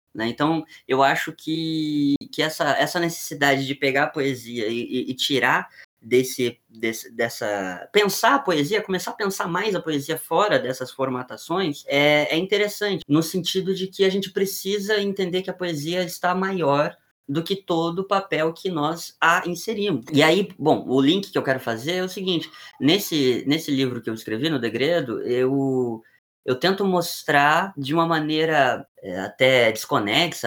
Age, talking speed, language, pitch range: 20-39, 160 wpm, Portuguese, 140-190 Hz